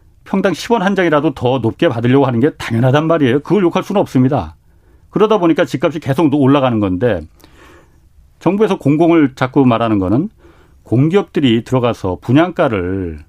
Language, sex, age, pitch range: Korean, male, 40-59, 105-155 Hz